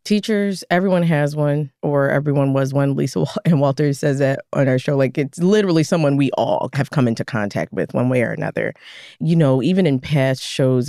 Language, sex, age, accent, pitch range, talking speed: English, female, 20-39, American, 130-160 Hz, 205 wpm